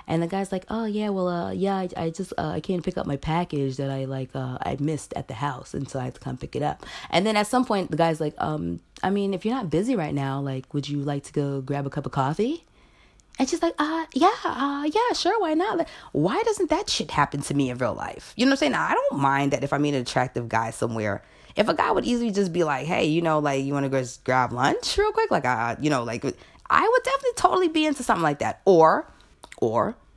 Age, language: 20-39, English